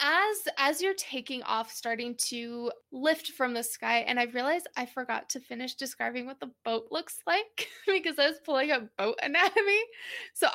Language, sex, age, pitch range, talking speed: English, female, 20-39, 235-275 Hz, 180 wpm